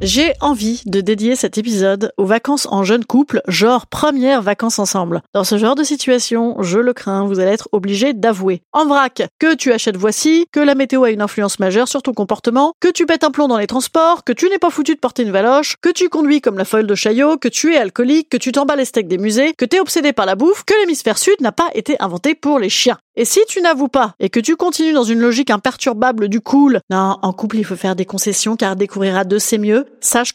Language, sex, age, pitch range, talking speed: French, female, 30-49, 210-295 Hz, 250 wpm